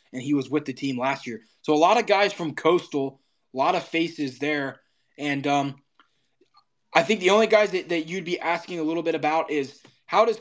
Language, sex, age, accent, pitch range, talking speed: English, male, 20-39, American, 140-170 Hz, 225 wpm